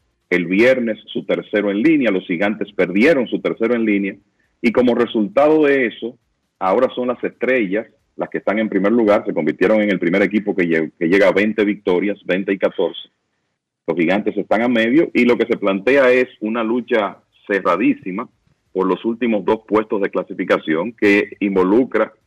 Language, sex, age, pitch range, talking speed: Spanish, male, 40-59, 95-120 Hz, 175 wpm